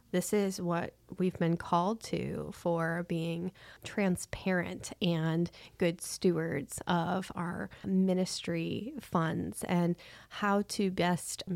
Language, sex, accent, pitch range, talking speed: English, female, American, 170-195 Hz, 110 wpm